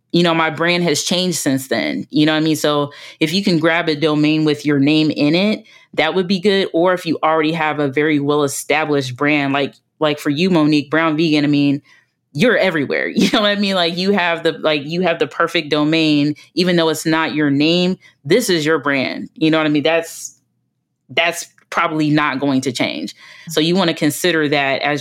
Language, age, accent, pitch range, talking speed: English, 20-39, American, 140-160 Hz, 225 wpm